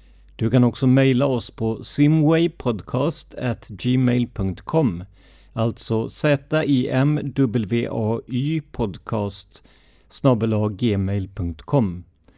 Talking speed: 80 wpm